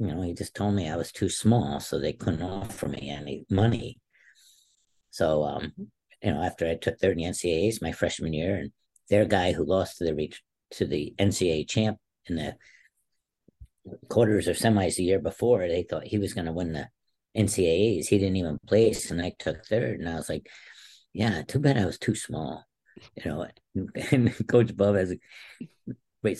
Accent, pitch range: American, 85-105 Hz